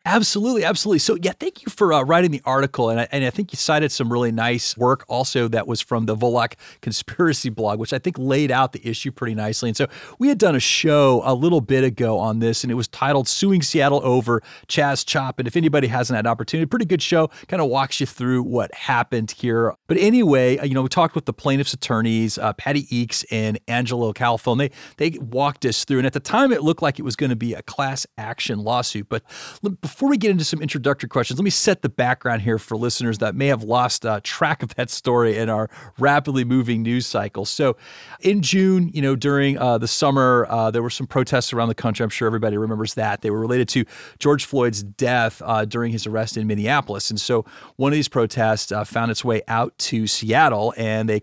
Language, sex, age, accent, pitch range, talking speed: English, male, 40-59, American, 115-145 Hz, 230 wpm